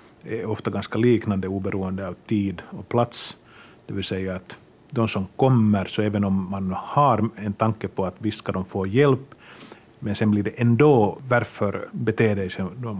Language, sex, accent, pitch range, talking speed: Swedish, male, Finnish, 100-120 Hz, 175 wpm